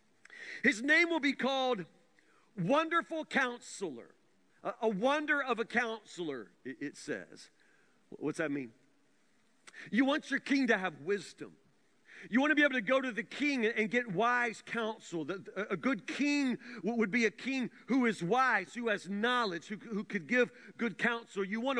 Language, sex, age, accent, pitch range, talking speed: English, male, 50-69, American, 215-285 Hz, 160 wpm